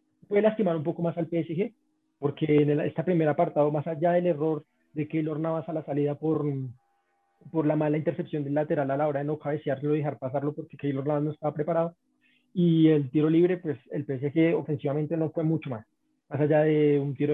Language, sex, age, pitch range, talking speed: Spanish, male, 30-49, 145-170 Hz, 215 wpm